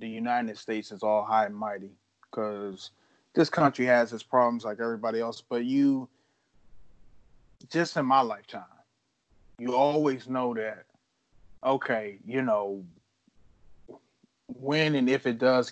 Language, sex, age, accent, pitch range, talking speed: English, male, 30-49, American, 115-140 Hz, 135 wpm